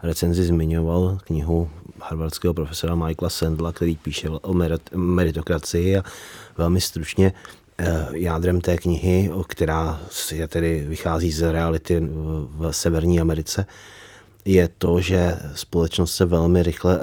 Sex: male